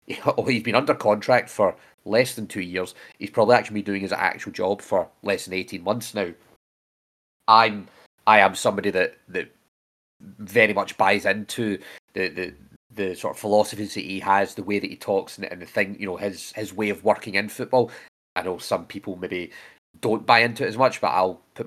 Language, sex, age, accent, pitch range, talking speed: English, male, 30-49, British, 100-125 Hz, 210 wpm